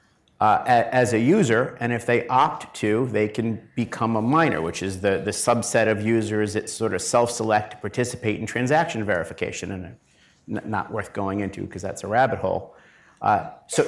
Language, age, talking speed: English, 50-69, 180 wpm